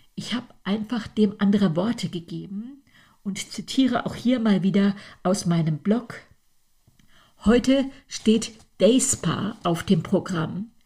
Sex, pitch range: female, 180-220 Hz